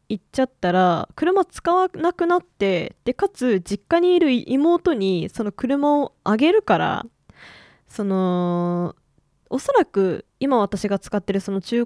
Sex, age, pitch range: female, 20-39, 195-295 Hz